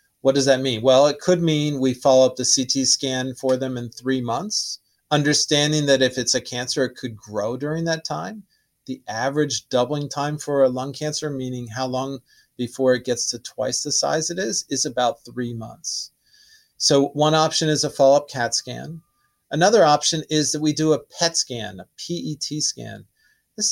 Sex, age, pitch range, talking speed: male, 40-59, 130-155 Hz, 190 wpm